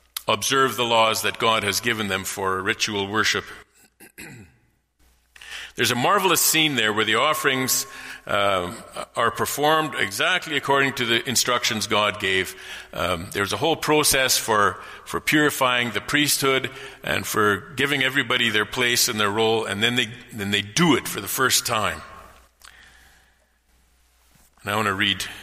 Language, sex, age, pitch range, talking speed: English, male, 50-69, 90-135 Hz, 140 wpm